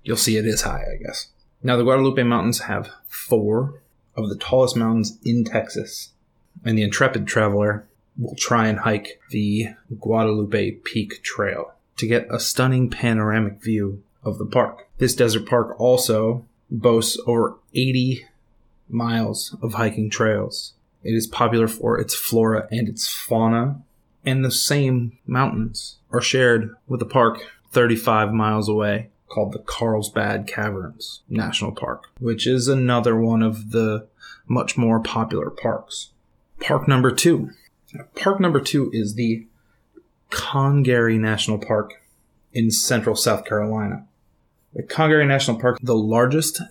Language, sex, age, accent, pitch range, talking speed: English, male, 20-39, American, 110-125 Hz, 140 wpm